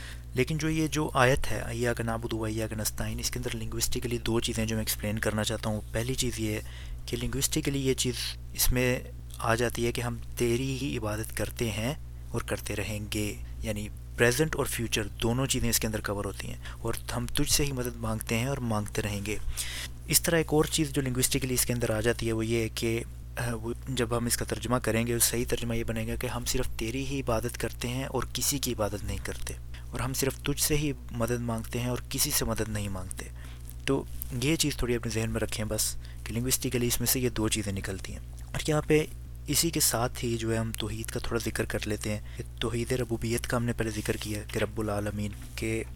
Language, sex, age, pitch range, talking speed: Urdu, male, 20-39, 105-120 Hz, 235 wpm